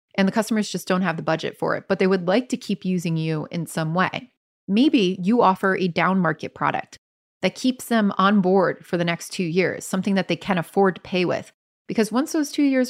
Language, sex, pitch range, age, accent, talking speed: English, female, 165-200 Hz, 30-49, American, 235 wpm